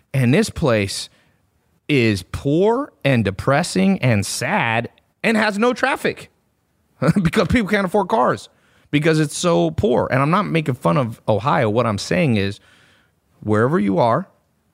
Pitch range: 115-160 Hz